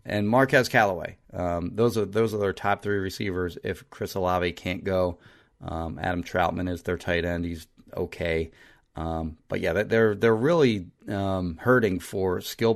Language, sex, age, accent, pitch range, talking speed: English, male, 30-49, American, 95-115 Hz, 170 wpm